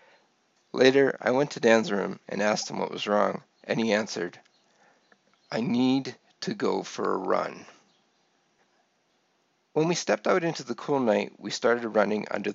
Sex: male